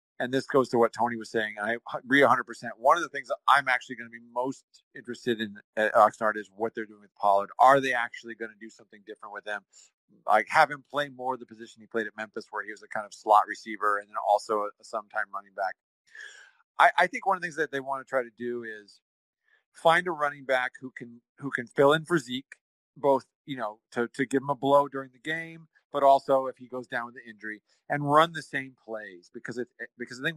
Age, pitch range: 40-59, 115-140 Hz